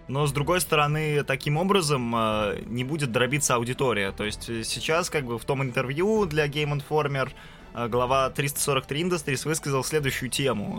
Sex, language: male, Russian